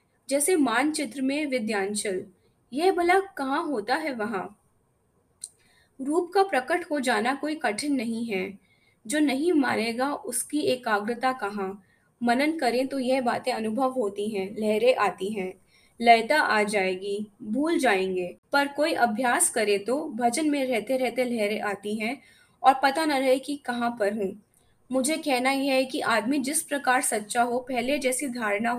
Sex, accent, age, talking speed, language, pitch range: female, native, 20-39, 155 wpm, Hindi, 210-280 Hz